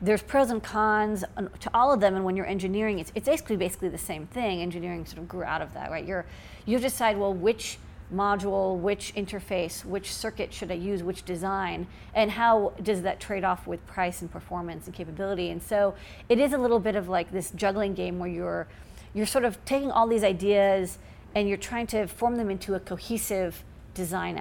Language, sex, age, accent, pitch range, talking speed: English, female, 40-59, American, 185-225 Hz, 210 wpm